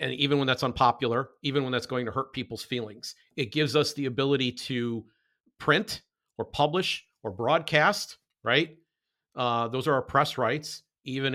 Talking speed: 170 wpm